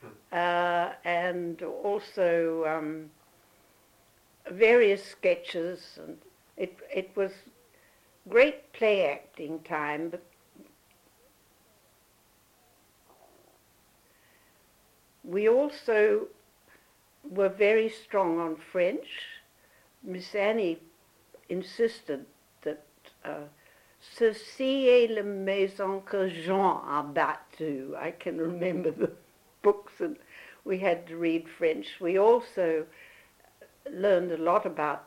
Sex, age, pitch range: female, 60-79, 155-195 Hz